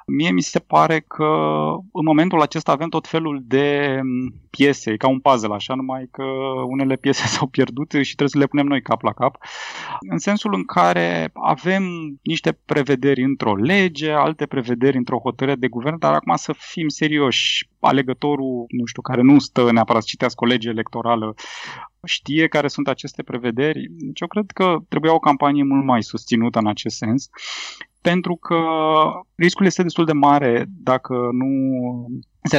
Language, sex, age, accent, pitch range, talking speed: Romanian, male, 20-39, native, 115-145 Hz, 170 wpm